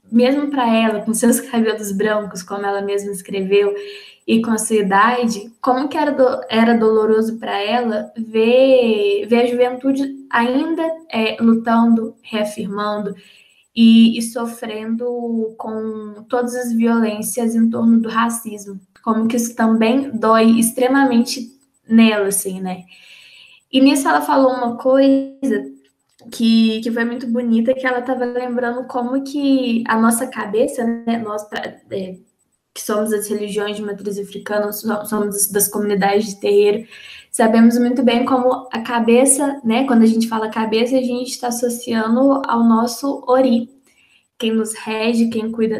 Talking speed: 145 wpm